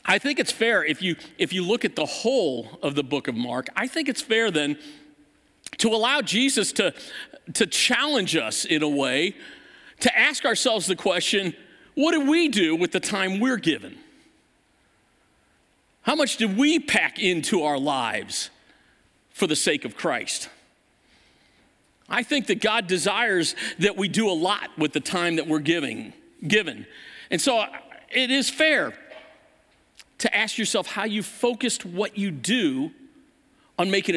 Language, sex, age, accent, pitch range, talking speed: English, male, 50-69, American, 185-270 Hz, 160 wpm